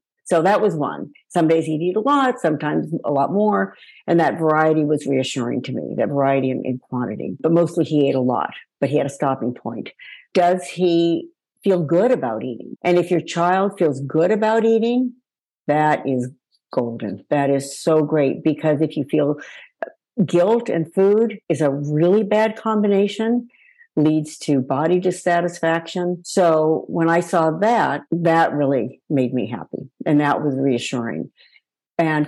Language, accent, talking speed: English, American, 165 wpm